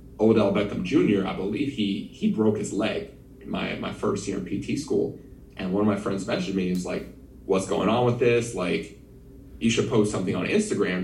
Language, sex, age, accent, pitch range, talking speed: English, male, 30-49, American, 100-120 Hz, 210 wpm